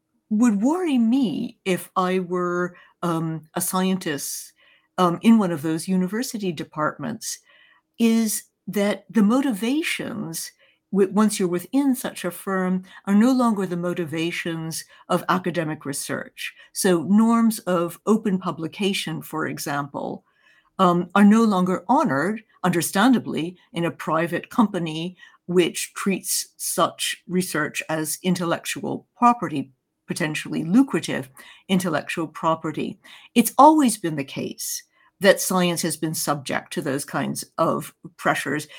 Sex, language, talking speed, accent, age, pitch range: female, English, 120 wpm, American, 60-79, 170-225 Hz